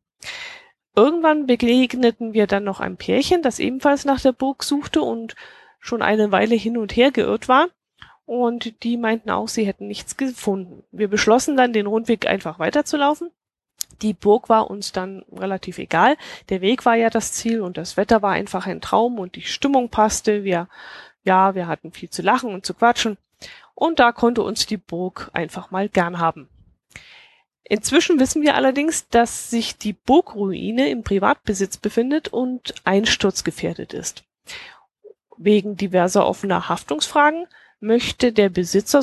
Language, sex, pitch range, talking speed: German, female, 195-255 Hz, 155 wpm